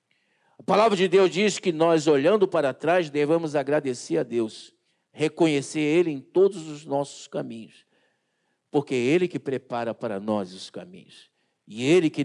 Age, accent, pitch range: 50-69, Brazilian, 150-210 Hz